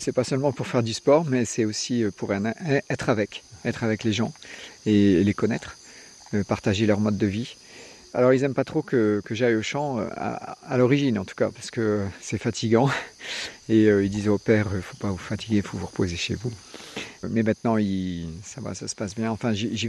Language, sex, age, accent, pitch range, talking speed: French, male, 50-69, French, 105-130 Hz, 225 wpm